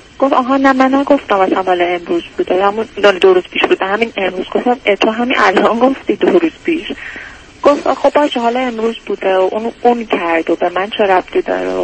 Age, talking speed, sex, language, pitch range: 30-49, 215 wpm, female, Persian, 195-265 Hz